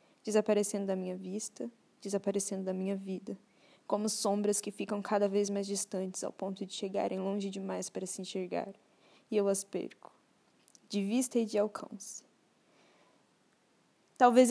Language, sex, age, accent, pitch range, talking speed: Portuguese, female, 10-29, Brazilian, 200-225 Hz, 145 wpm